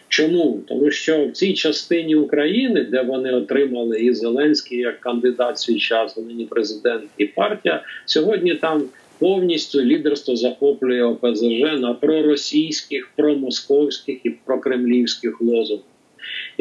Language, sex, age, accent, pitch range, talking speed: Ukrainian, male, 50-69, native, 125-155 Hz, 115 wpm